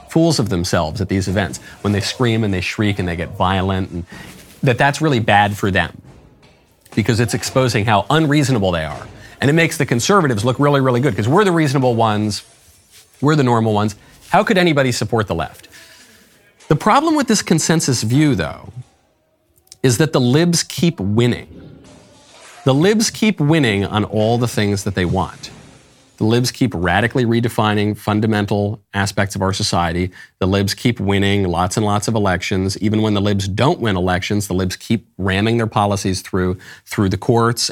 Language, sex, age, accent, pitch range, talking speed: English, male, 40-59, American, 95-130 Hz, 180 wpm